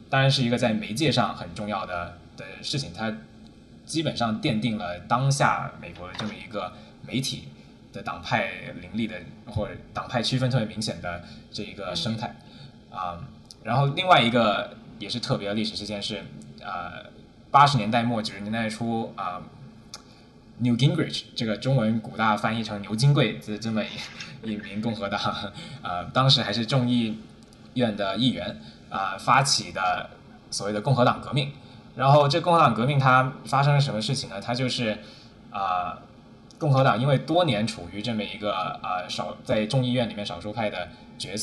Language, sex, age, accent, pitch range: Chinese, male, 10-29, native, 105-130 Hz